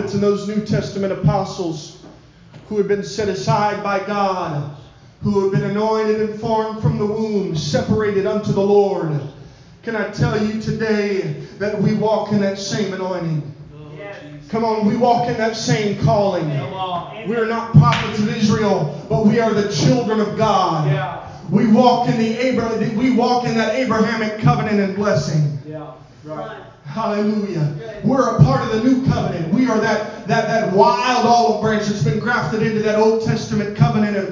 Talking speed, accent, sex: 170 wpm, American, male